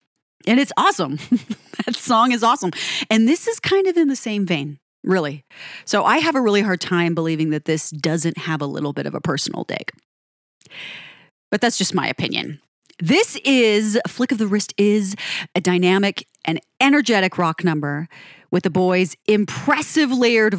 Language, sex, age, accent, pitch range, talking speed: English, female, 30-49, American, 170-225 Hz, 170 wpm